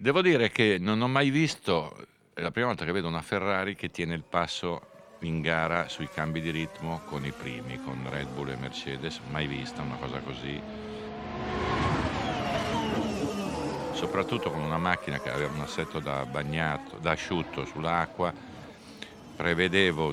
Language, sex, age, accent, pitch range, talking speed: Italian, male, 50-69, native, 70-100 Hz, 155 wpm